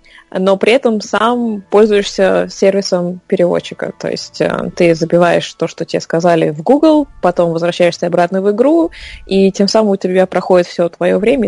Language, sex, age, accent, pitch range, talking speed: Russian, female, 20-39, native, 170-195 Hz, 160 wpm